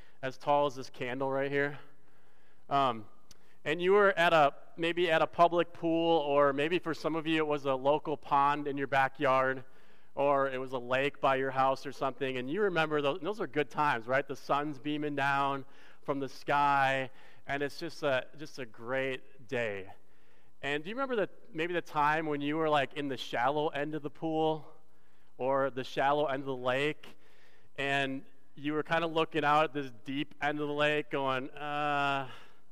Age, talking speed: 30-49, 200 wpm